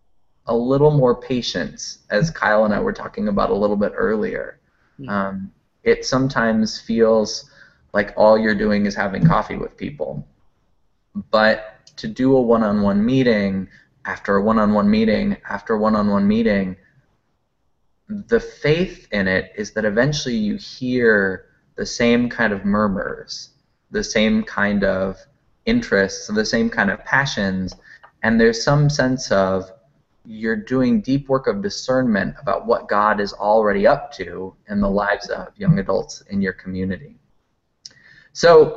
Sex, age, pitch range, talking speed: male, 20-39, 100-130 Hz, 145 wpm